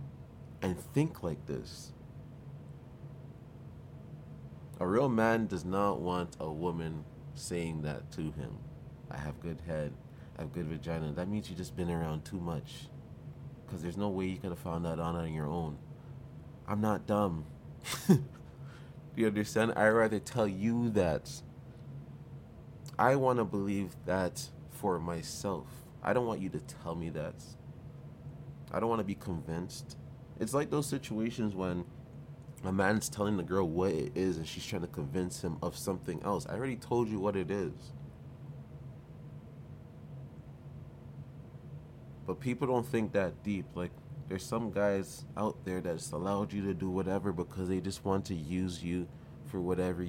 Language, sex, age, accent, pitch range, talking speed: English, male, 30-49, American, 90-130 Hz, 155 wpm